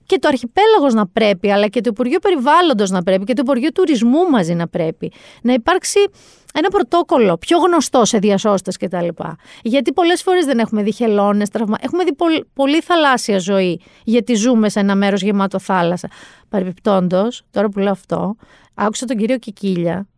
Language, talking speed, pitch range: Greek, 170 wpm, 200-275 Hz